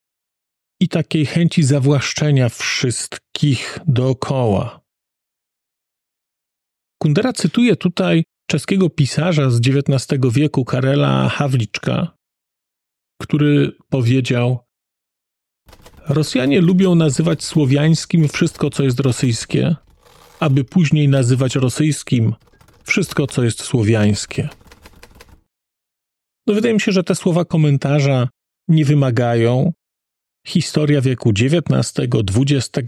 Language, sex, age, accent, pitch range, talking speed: Polish, male, 40-59, native, 125-165 Hz, 85 wpm